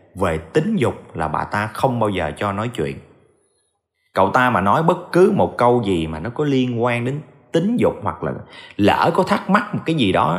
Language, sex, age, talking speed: Vietnamese, male, 20-39, 225 wpm